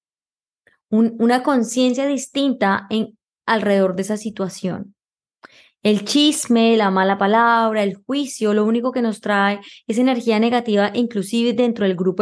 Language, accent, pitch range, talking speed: Spanish, Colombian, 200-250 Hz, 135 wpm